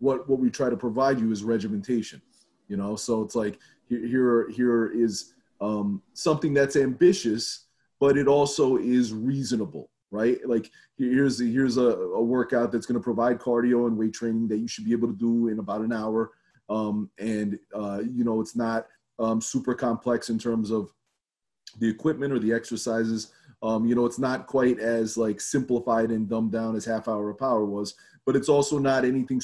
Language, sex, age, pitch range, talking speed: English, male, 30-49, 110-130 Hz, 190 wpm